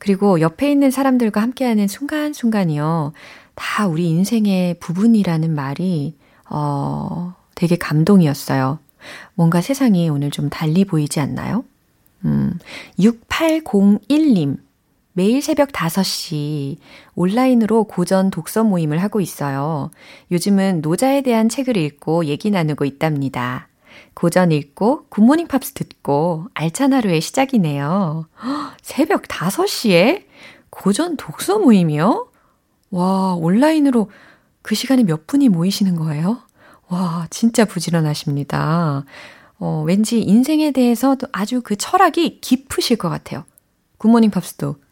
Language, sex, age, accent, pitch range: Korean, female, 30-49, native, 160-235 Hz